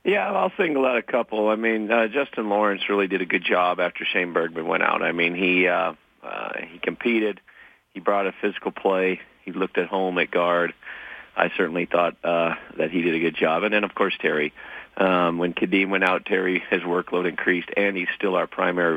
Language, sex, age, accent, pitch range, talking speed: English, male, 40-59, American, 85-105 Hz, 215 wpm